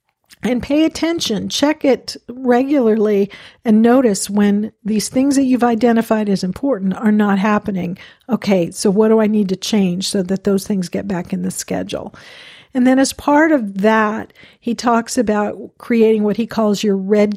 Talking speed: 175 wpm